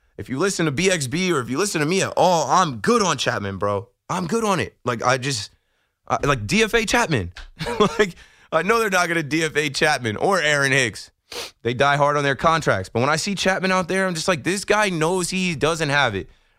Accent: American